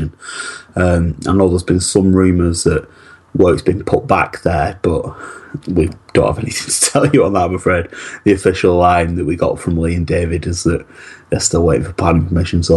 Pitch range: 85-95 Hz